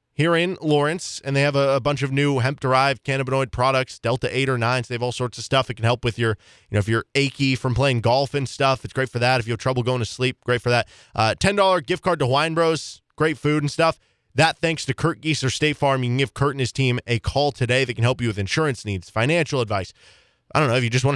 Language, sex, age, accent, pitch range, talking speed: English, male, 20-39, American, 120-150 Hz, 280 wpm